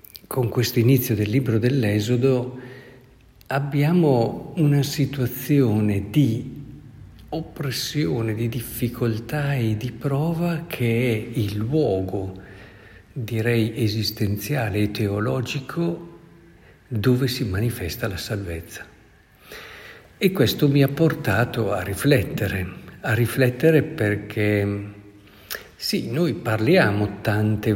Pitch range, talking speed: 100-130 Hz, 95 wpm